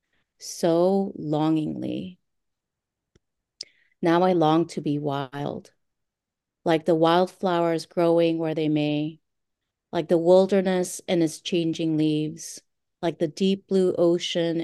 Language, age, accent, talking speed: English, 30-49, American, 110 wpm